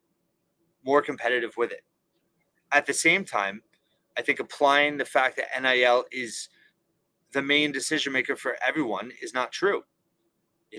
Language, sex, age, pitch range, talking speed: English, male, 30-49, 125-150 Hz, 145 wpm